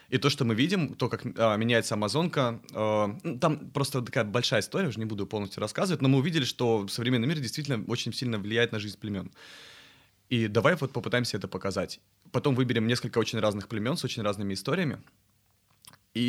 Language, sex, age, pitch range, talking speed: Russian, male, 20-39, 105-135 Hz, 190 wpm